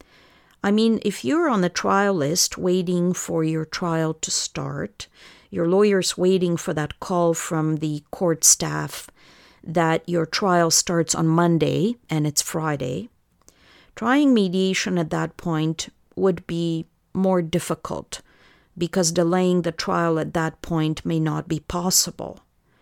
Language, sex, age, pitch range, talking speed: English, female, 50-69, 165-195 Hz, 140 wpm